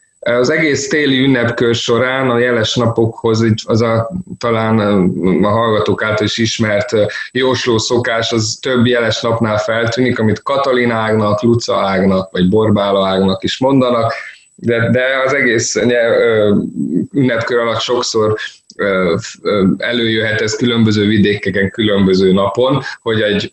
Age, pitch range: 20-39, 105-125 Hz